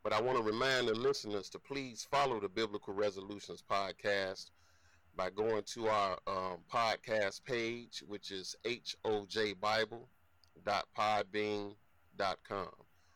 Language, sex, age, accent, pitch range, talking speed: English, male, 30-49, American, 90-110 Hz, 110 wpm